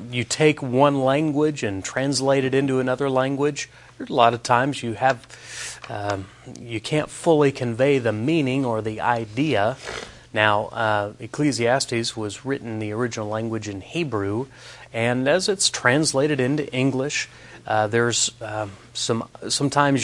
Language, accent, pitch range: English, American, 110-135 Hz